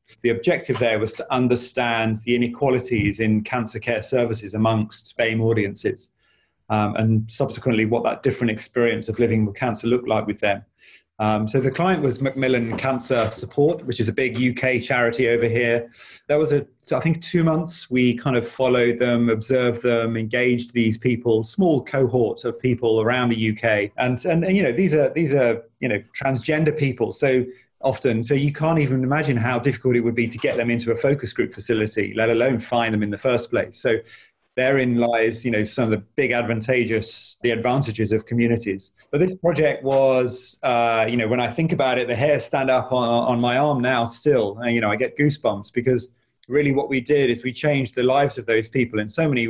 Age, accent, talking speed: 30-49, British, 205 wpm